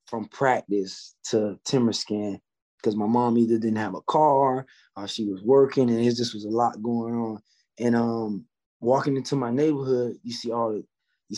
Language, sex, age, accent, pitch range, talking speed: English, male, 20-39, American, 115-135 Hz, 190 wpm